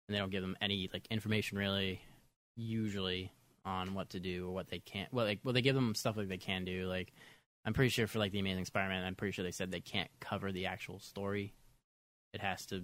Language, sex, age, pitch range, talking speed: English, male, 20-39, 95-110 Hz, 245 wpm